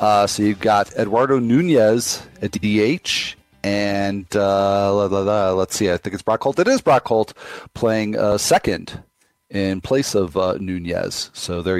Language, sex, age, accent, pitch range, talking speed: English, male, 40-59, American, 100-125 Hz, 175 wpm